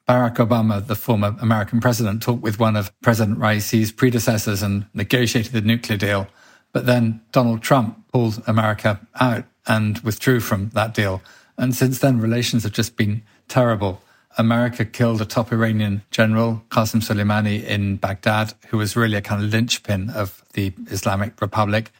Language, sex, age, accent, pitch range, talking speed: English, male, 40-59, British, 105-120 Hz, 160 wpm